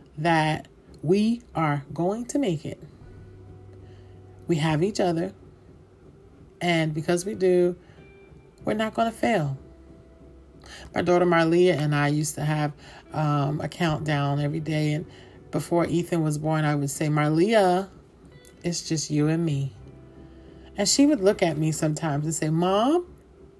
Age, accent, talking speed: 30-49, American, 145 wpm